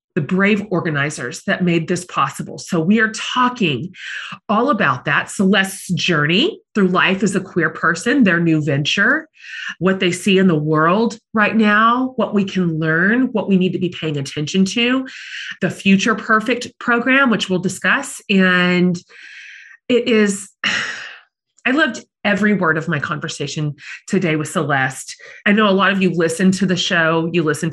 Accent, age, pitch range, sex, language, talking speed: American, 30-49, 155-195 Hz, female, English, 165 wpm